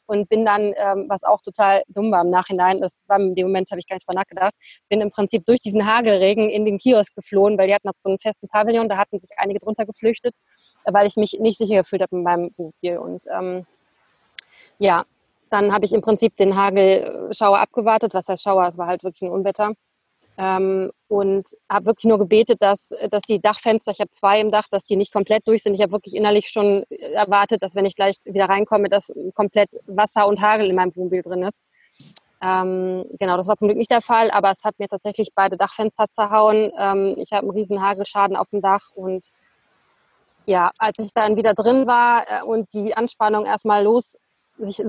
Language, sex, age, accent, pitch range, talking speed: German, female, 20-39, German, 195-220 Hz, 210 wpm